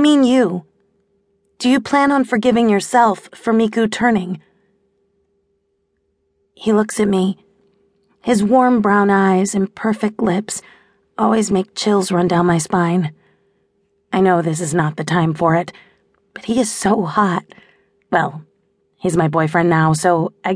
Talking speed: 145 wpm